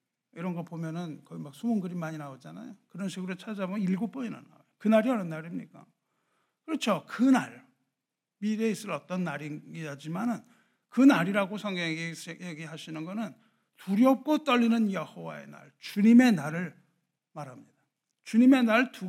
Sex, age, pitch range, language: male, 60-79, 165-230 Hz, Korean